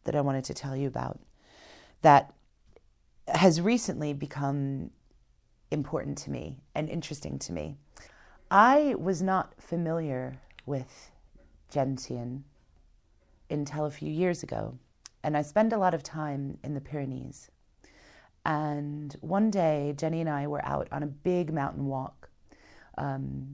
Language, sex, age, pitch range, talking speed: English, female, 30-49, 140-175 Hz, 135 wpm